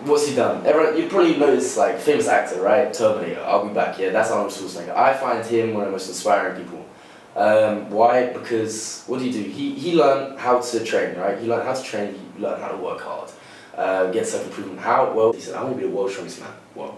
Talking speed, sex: 245 wpm, male